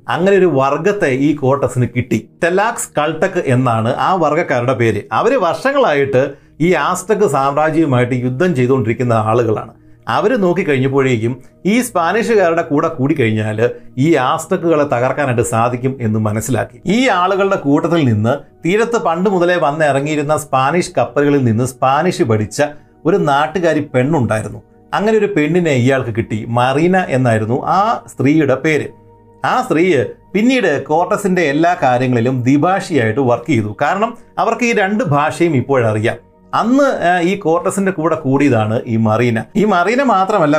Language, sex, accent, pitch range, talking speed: Malayalam, male, native, 120-170 Hz, 125 wpm